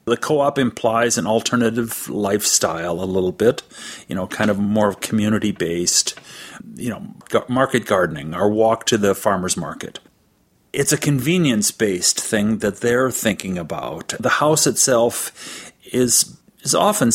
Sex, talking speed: male, 145 wpm